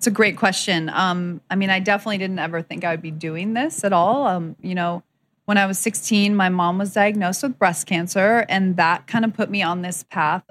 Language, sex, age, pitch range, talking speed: English, female, 20-39, 170-200 Hz, 235 wpm